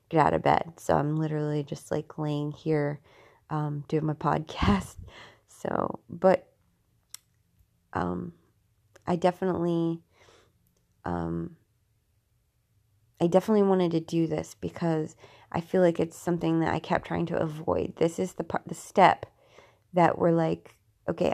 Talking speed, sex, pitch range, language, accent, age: 140 wpm, female, 150-190 Hz, English, American, 20-39